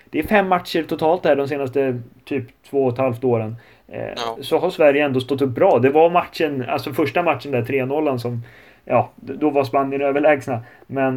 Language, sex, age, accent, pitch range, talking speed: Swedish, male, 30-49, native, 130-165 Hz, 200 wpm